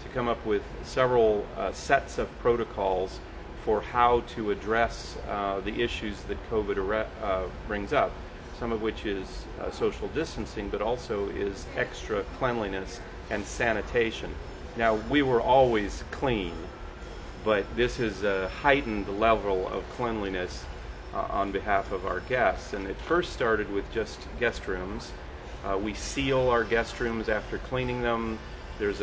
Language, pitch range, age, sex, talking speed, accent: English, 100-115 Hz, 40-59, male, 150 wpm, American